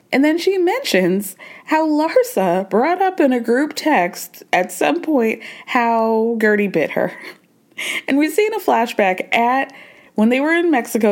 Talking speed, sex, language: 160 wpm, female, English